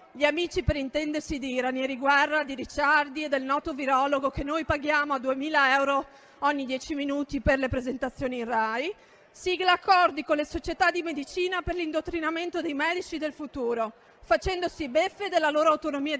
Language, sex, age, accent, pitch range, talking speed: Italian, female, 40-59, native, 280-345 Hz, 165 wpm